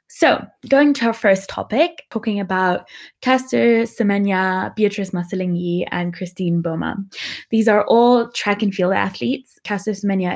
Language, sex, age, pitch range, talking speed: English, female, 20-39, 175-210 Hz, 140 wpm